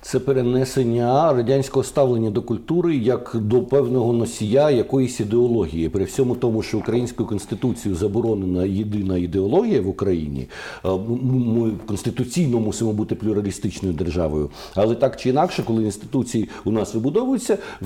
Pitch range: 105-130 Hz